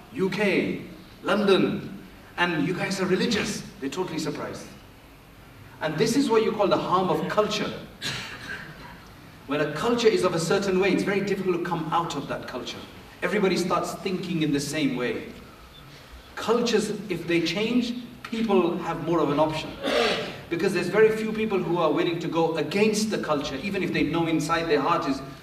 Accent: South African